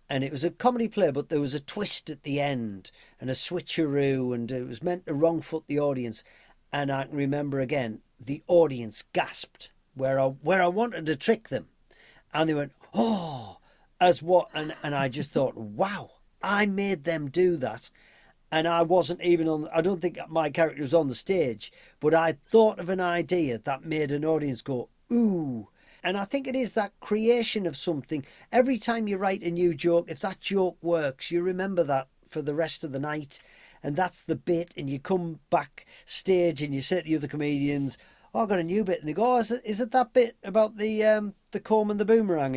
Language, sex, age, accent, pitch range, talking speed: English, male, 40-59, British, 145-200 Hz, 215 wpm